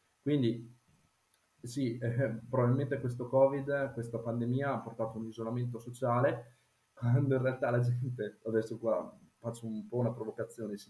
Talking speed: 145 wpm